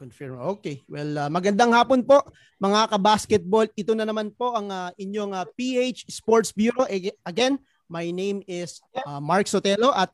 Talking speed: 165 wpm